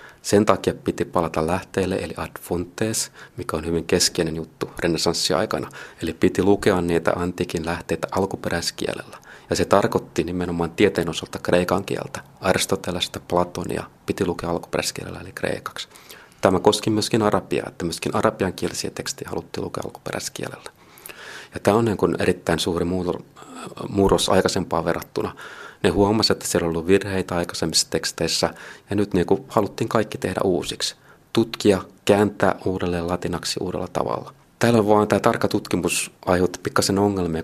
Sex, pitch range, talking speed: male, 85-100 Hz, 140 wpm